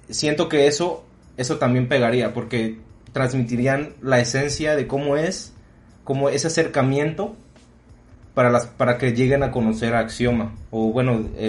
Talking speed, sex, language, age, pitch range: 145 wpm, male, Spanish, 30-49, 115-145 Hz